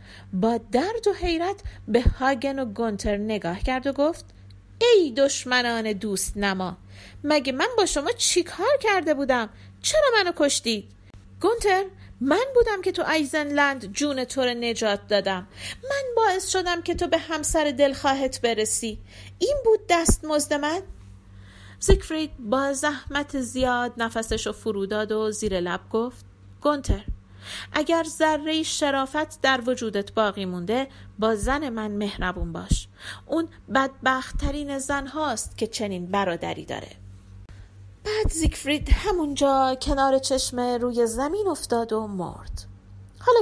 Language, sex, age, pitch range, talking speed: Persian, female, 40-59, 200-300 Hz, 130 wpm